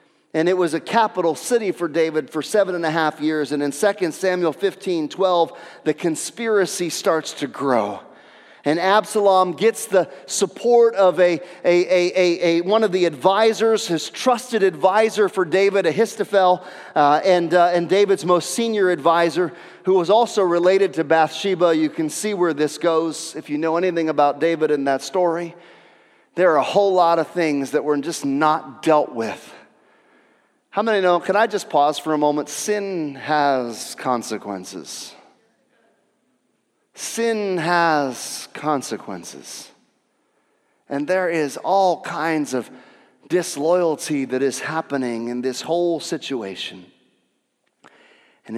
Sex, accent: male, American